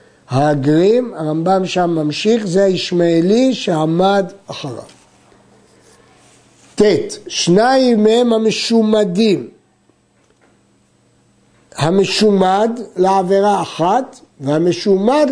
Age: 60-79